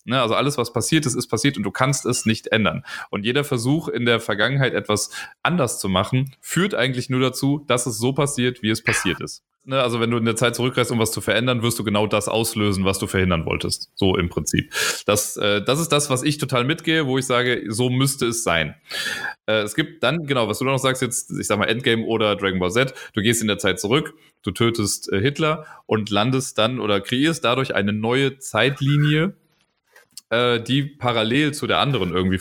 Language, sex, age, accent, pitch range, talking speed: German, male, 30-49, German, 105-135 Hz, 220 wpm